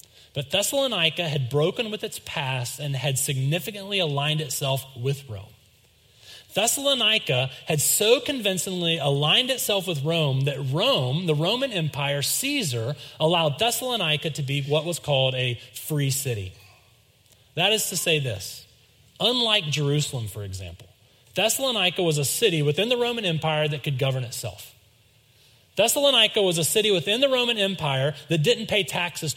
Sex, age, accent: male, 30-49, American